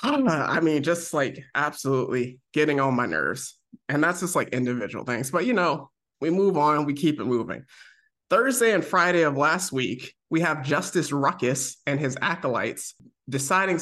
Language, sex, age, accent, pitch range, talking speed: English, male, 20-39, American, 135-175 Hz, 180 wpm